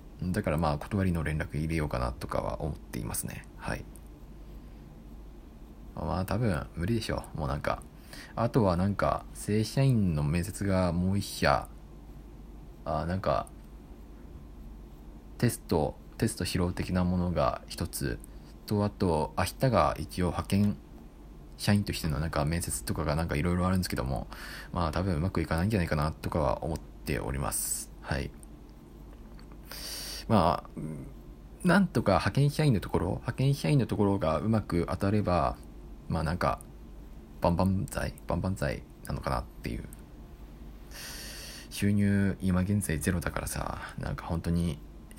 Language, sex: Japanese, male